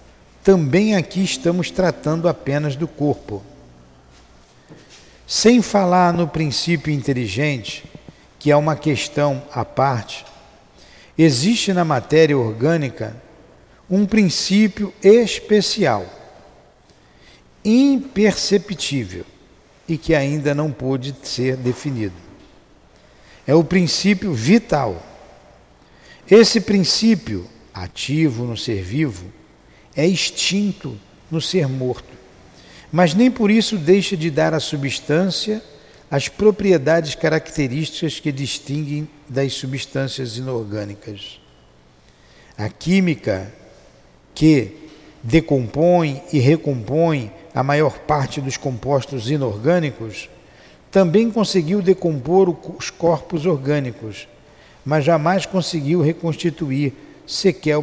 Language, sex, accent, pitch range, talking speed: Portuguese, male, Brazilian, 125-175 Hz, 90 wpm